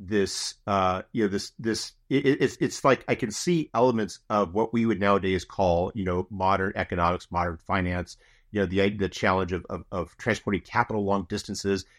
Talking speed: 190 wpm